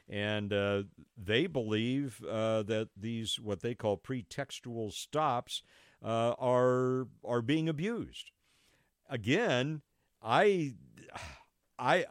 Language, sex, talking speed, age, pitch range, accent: English, male, 100 wpm, 50-69, 95-125 Hz, American